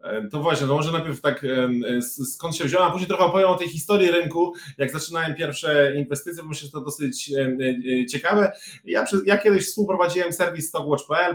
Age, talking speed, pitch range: 20-39, 170 wpm, 140-175 Hz